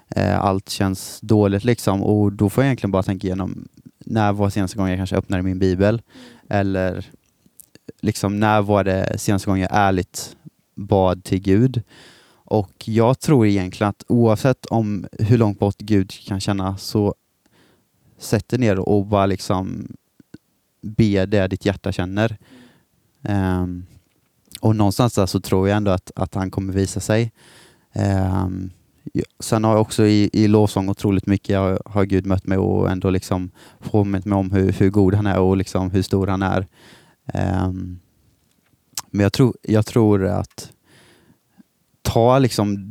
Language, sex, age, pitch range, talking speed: Swedish, male, 20-39, 95-110 Hz, 160 wpm